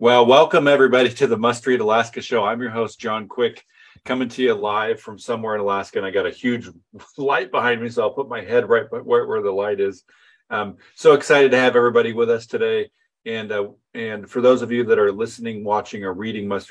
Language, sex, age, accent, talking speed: English, male, 40-59, American, 230 wpm